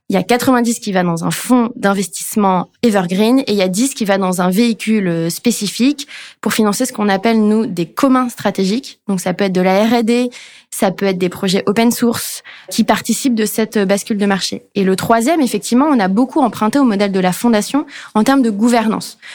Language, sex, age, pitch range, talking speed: French, female, 20-39, 200-255 Hz, 215 wpm